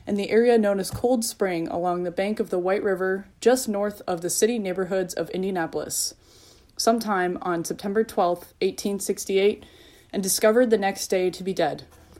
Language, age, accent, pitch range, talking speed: English, 20-39, American, 180-225 Hz, 170 wpm